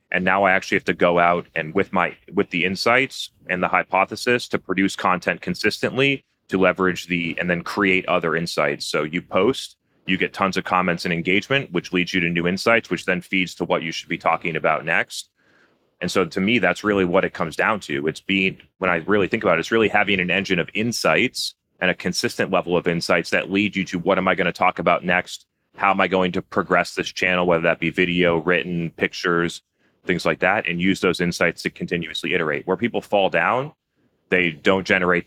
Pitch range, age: 85-100 Hz, 30-49